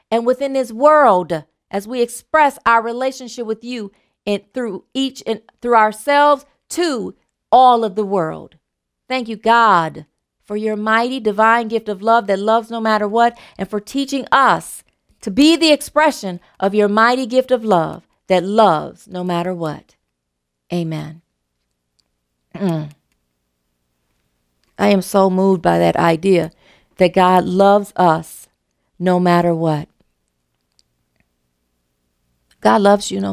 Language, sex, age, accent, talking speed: English, female, 40-59, American, 135 wpm